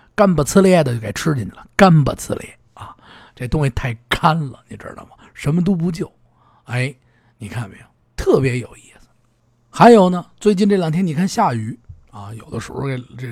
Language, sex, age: Chinese, male, 50-69